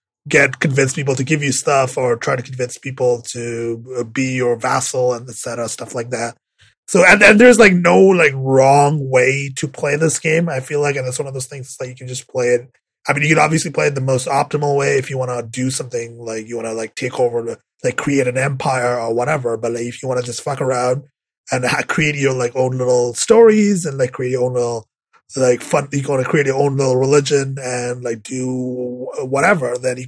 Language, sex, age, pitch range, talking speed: English, male, 20-39, 120-145 Hz, 235 wpm